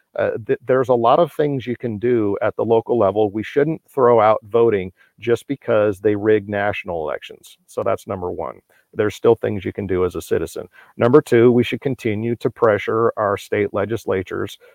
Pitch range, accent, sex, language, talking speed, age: 105-130 Hz, American, male, English, 195 wpm, 50-69